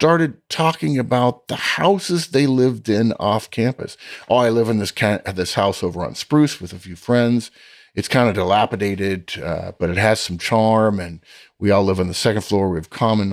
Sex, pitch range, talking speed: male, 95-140 Hz, 205 wpm